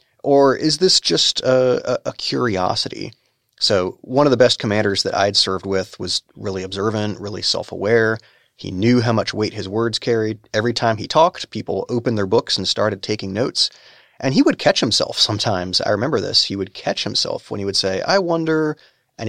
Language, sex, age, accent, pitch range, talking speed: English, male, 30-49, American, 100-125 Hz, 195 wpm